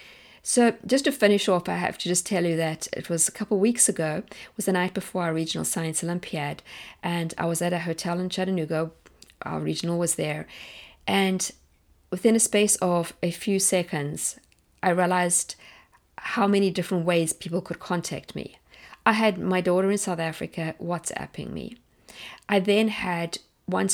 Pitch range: 170-210 Hz